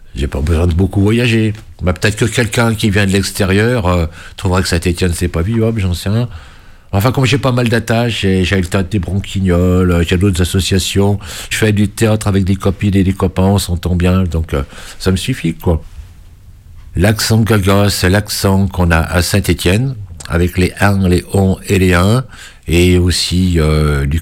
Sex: male